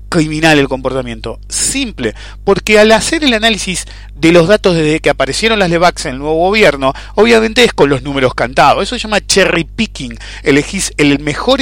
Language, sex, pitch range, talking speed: English, male, 130-215 Hz, 180 wpm